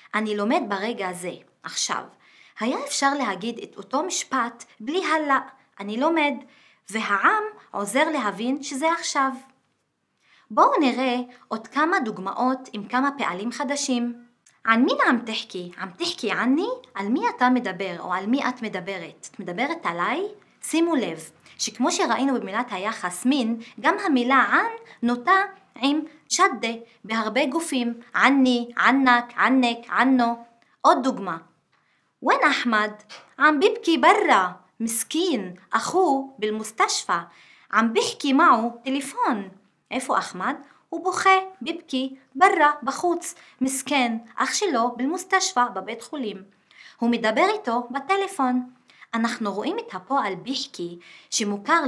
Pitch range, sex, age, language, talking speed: 225-310 Hz, female, 20-39, Hebrew, 115 wpm